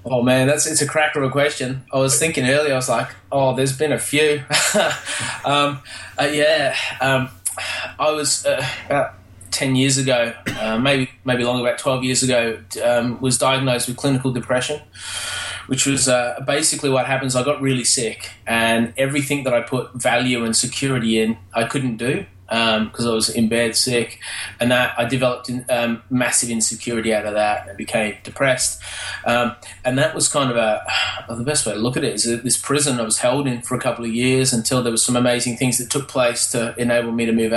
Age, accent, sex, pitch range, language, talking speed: 20-39, Australian, male, 115-135 Hz, English, 210 wpm